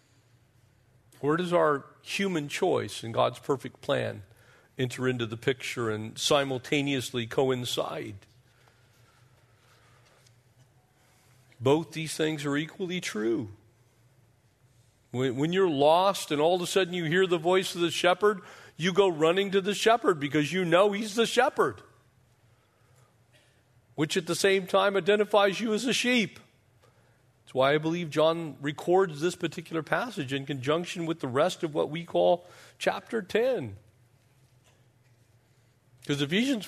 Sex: male